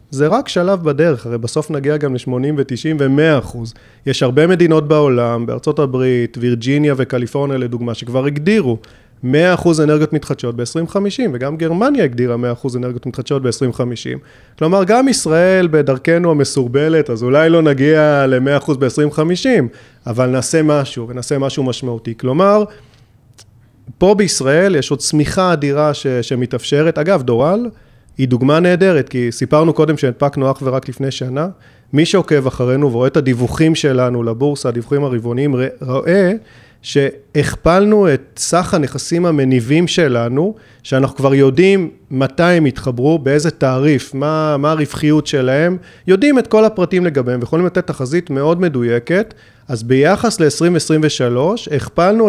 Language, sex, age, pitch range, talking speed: Hebrew, male, 30-49, 125-165 Hz, 135 wpm